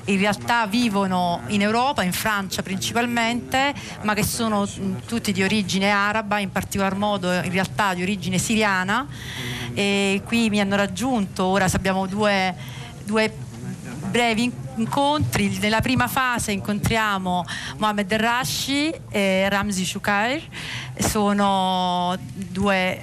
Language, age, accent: Italian, 40-59, native